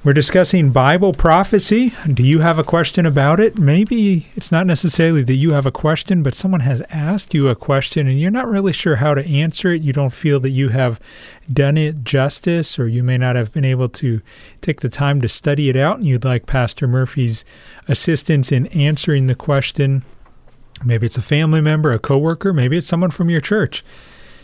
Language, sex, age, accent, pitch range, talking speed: English, male, 40-59, American, 125-165 Hz, 205 wpm